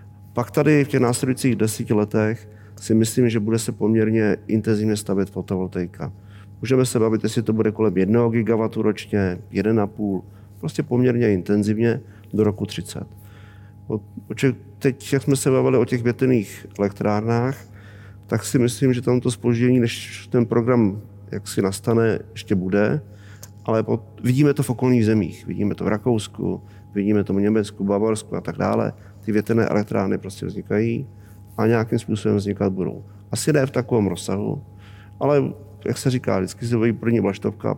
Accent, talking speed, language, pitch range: native, 160 wpm, Czech, 100-115 Hz